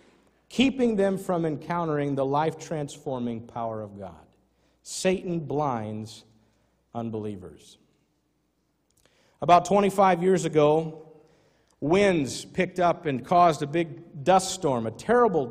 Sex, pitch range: male, 120-170 Hz